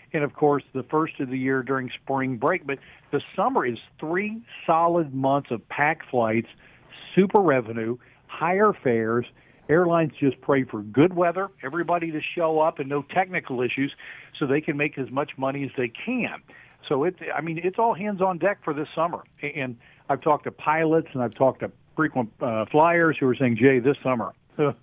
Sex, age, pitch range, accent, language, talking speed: male, 50-69, 130-160 Hz, American, English, 190 wpm